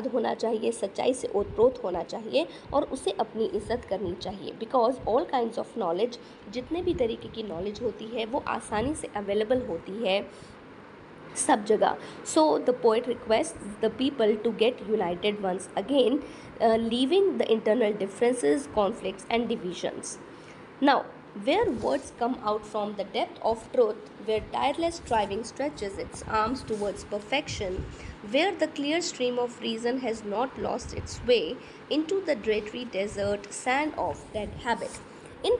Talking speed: 145 wpm